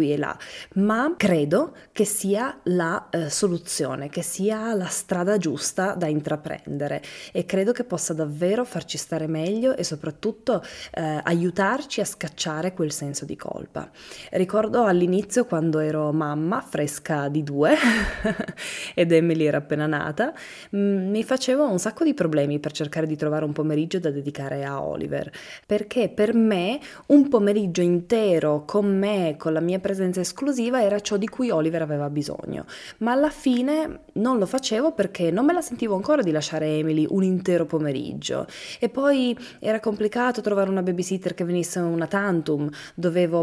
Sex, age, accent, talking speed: female, 20-39, native, 155 wpm